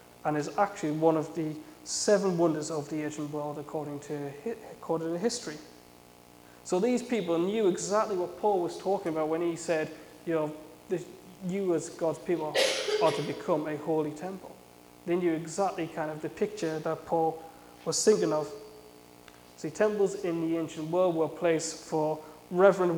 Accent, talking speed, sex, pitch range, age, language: British, 170 wpm, male, 145-170 Hz, 20-39, English